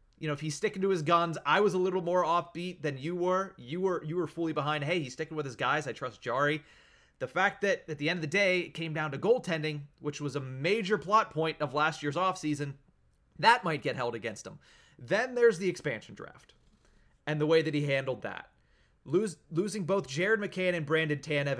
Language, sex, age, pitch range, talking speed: English, male, 30-49, 140-175 Hz, 230 wpm